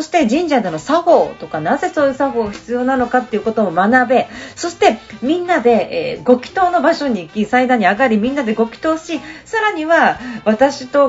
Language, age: Japanese, 40-59